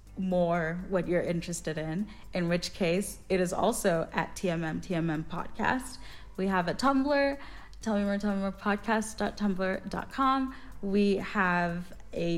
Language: English